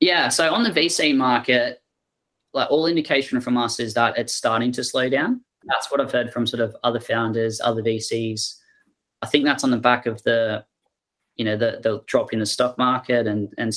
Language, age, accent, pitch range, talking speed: English, 20-39, Australian, 115-125 Hz, 210 wpm